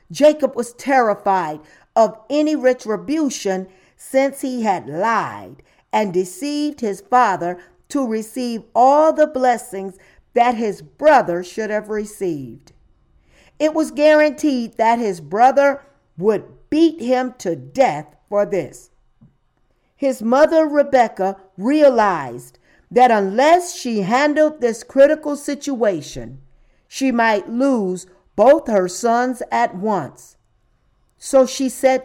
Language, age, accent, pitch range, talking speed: English, 50-69, American, 180-260 Hz, 110 wpm